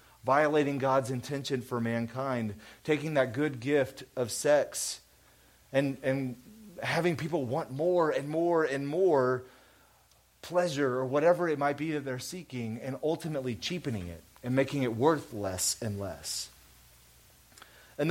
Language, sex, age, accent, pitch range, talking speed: English, male, 30-49, American, 130-160 Hz, 140 wpm